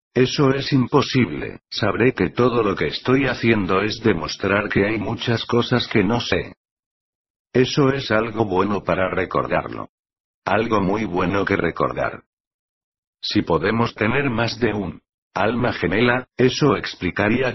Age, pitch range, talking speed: 60-79, 95-120 Hz, 135 wpm